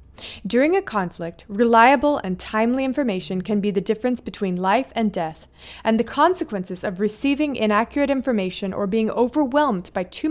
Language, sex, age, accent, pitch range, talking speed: English, female, 30-49, American, 190-255 Hz, 155 wpm